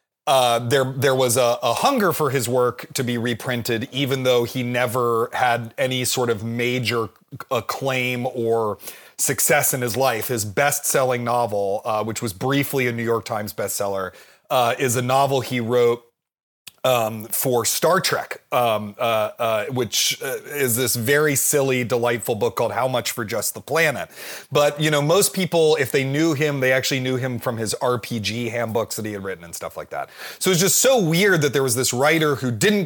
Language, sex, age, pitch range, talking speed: English, male, 30-49, 120-150 Hz, 190 wpm